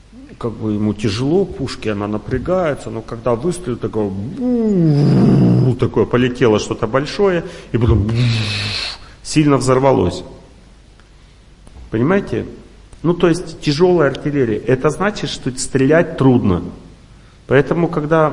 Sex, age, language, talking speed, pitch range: male, 40-59, Russian, 105 wpm, 115-160 Hz